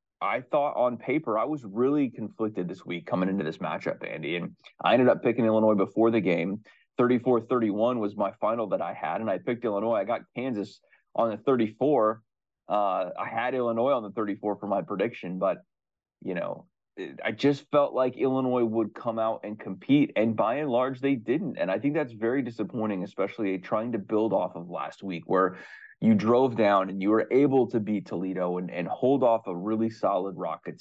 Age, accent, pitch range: 30-49, American, 100-125 Hz